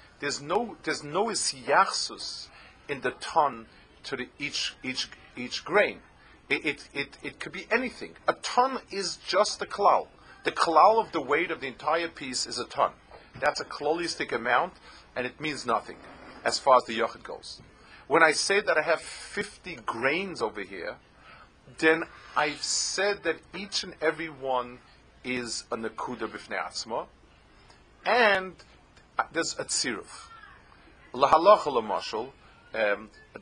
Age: 40-59